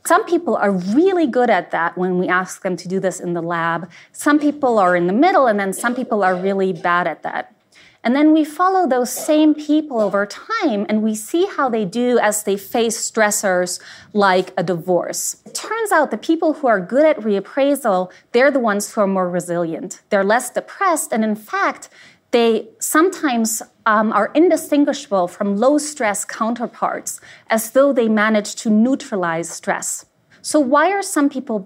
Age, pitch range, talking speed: 30-49, 190-280 Hz, 185 wpm